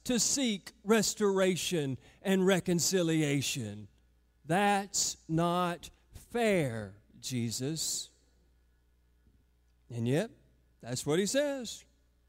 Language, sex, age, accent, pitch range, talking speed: English, male, 40-59, American, 145-225 Hz, 75 wpm